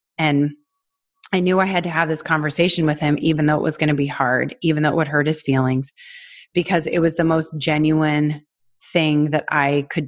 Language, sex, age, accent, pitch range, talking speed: English, female, 30-49, American, 150-190 Hz, 215 wpm